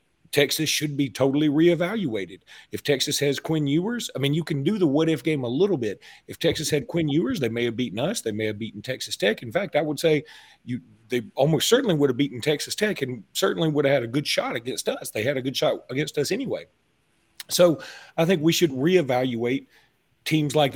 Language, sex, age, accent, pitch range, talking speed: English, male, 40-59, American, 125-160 Hz, 225 wpm